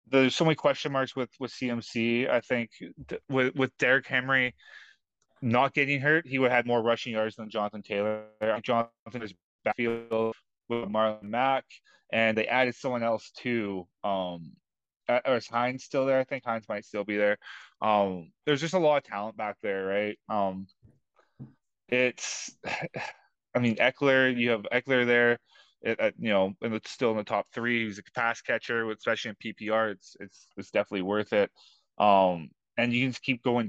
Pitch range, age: 105-125 Hz, 20-39